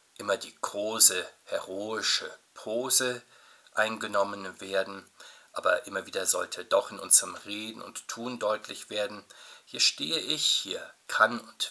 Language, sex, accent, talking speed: German, male, German, 130 wpm